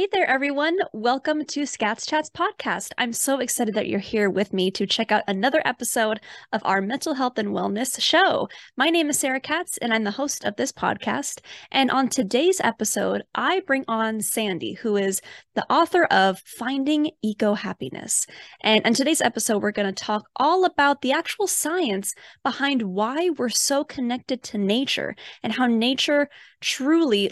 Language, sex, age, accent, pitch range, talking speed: English, female, 20-39, American, 210-280 Hz, 175 wpm